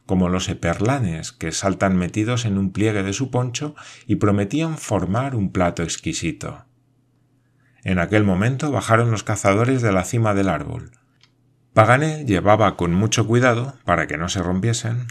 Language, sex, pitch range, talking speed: Spanish, male, 90-125 Hz, 155 wpm